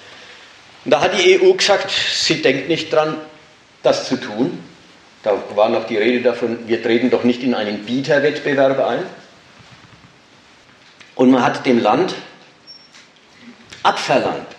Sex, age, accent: male, 50-69, German